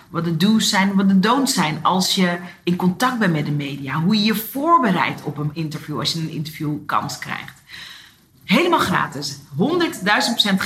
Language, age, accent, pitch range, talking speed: Dutch, 40-59, Dutch, 170-230 Hz, 180 wpm